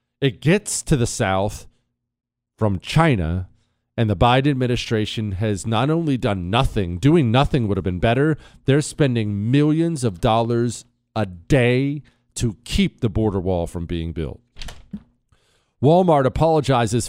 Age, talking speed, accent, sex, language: 40-59, 135 wpm, American, male, English